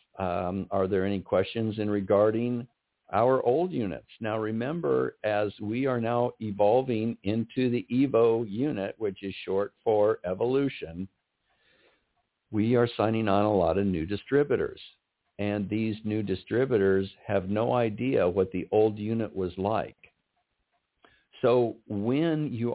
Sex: male